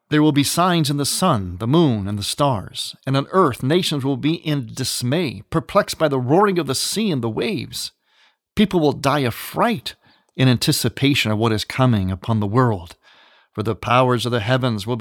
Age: 50-69